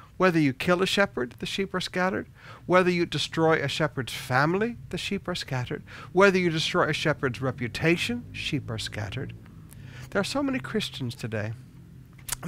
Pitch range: 135-185 Hz